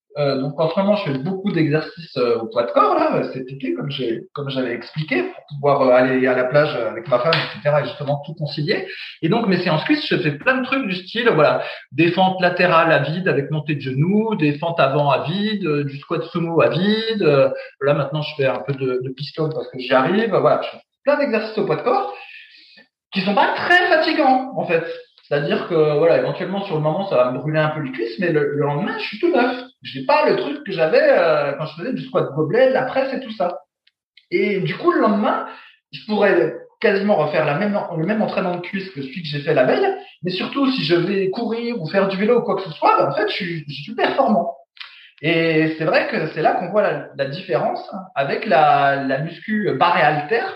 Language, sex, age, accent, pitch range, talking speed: French, male, 20-39, French, 145-225 Hz, 240 wpm